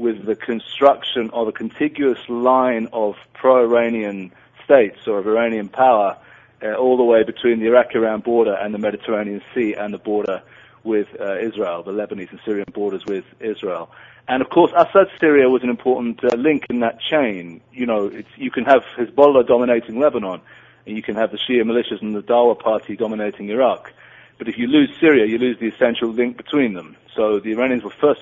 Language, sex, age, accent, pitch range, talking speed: English, male, 40-59, British, 110-135 Hz, 190 wpm